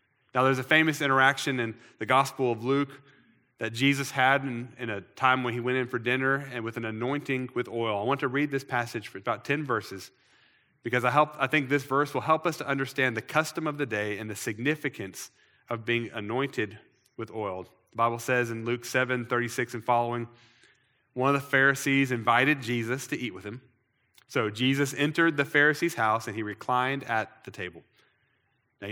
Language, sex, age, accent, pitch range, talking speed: English, male, 30-49, American, 115-135 Hz, 200 wpm